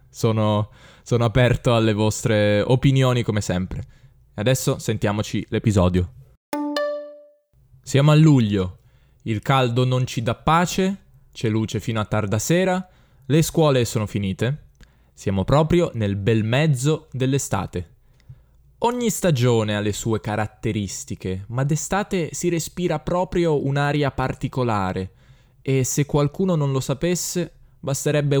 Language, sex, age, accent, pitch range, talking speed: Italian, male, 10-29, native, 115-150 Hz, 120 wpm